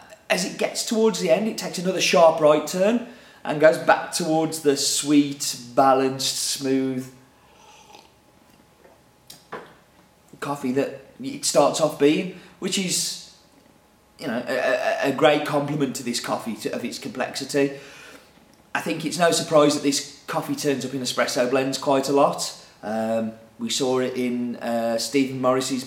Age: 30-49